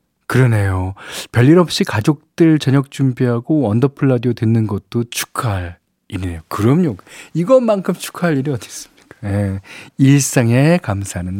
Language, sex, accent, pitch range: Korean, male, native, 110-155 Hz